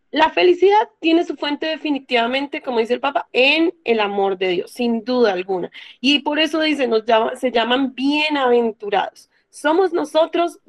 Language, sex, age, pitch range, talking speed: Spanish, female, 30-49, 240-325 Hz, 165 wpm